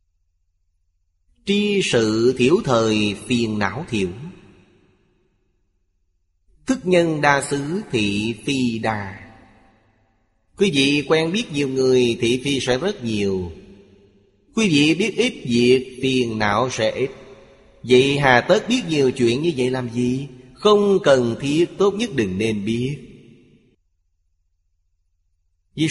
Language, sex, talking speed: Vietnamese, male, 125 wpm